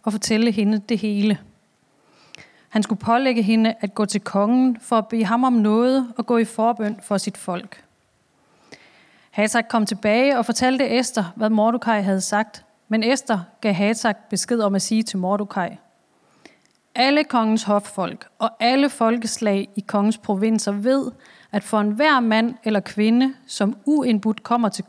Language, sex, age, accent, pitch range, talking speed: Danish, female, 30-49, native, 205-245 Hz, 160 wpm